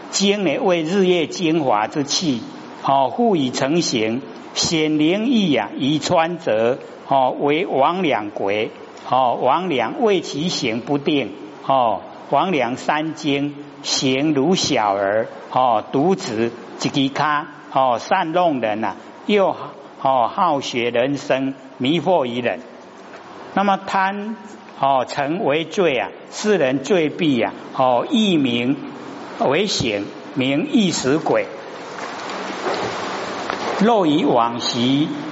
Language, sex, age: Chinese, male, 60-79